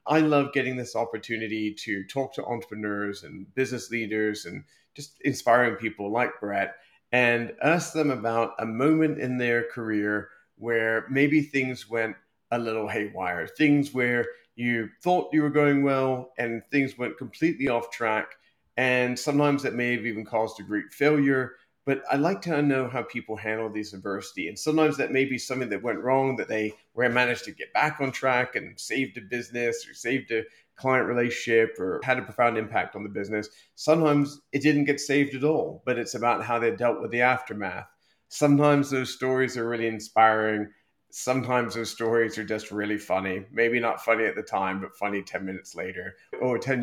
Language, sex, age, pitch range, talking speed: English, male, 30-49, 110-135 Hz, 185 wpm